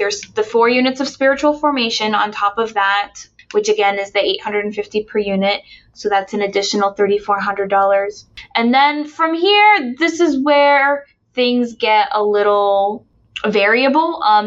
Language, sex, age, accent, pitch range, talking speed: English, female, 10-29, American, 205-265 Hz, 150 wpm